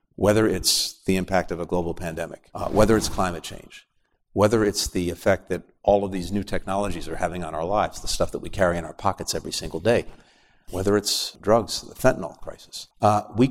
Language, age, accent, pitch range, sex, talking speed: English, 50-69, American, 90-110 Hz, male, 210 wpm